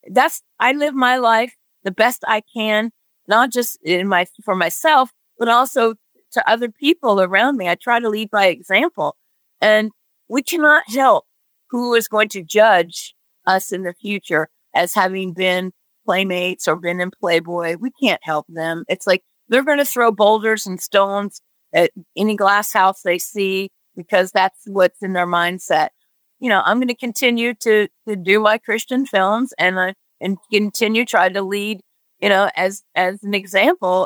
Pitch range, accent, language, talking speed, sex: 185-235 Hz, American, English, 175 wpm, female